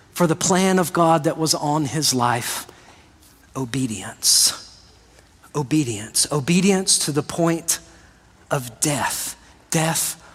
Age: 40-59